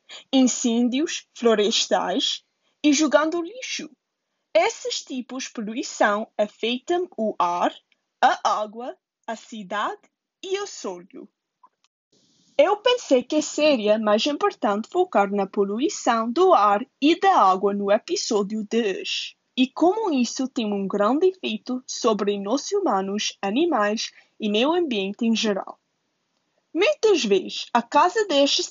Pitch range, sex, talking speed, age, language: 215-325 Hz, female, 120 wpm, 20-39, Portuguese